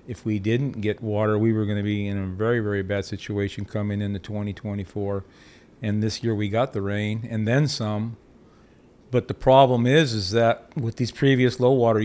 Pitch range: 105-120 Hz